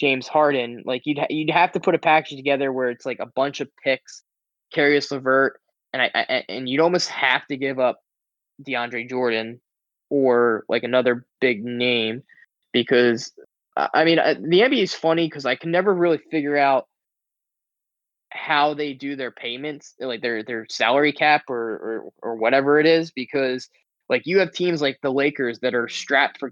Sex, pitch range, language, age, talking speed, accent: male, 120-145 Hz, English, 10-29, 185 wpm, American